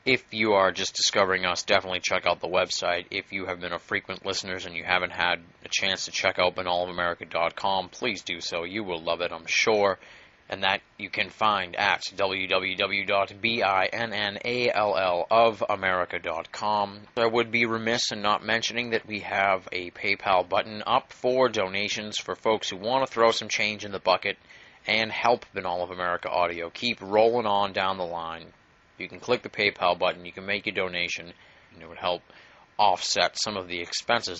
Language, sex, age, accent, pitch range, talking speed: English, male, 30-49, American, 90-110 Hz, 180 wpm